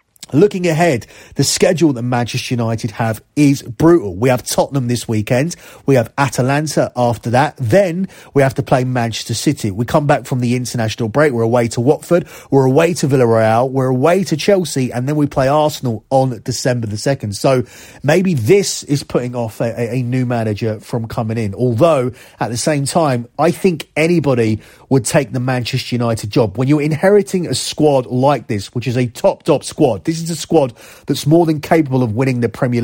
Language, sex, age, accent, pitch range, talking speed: English, male, 30-49, British, 115-145 Hz, 195 wpm